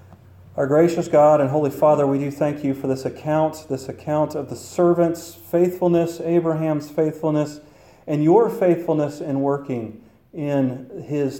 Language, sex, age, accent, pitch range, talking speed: English, male, 40-59, American, 130-160 Hz, 145 wpm